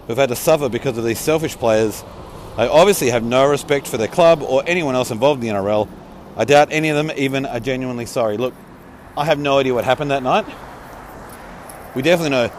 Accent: Australian